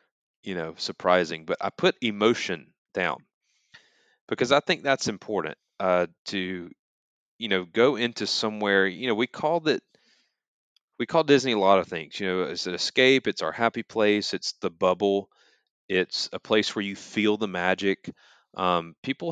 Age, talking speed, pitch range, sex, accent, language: 30-49, 170 wpm, 95-115 Hz, male, American, English